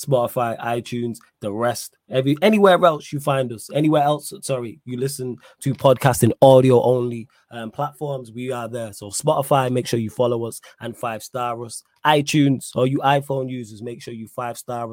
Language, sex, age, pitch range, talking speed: English, male, 20-39, 120-140 Hz, 175 wpm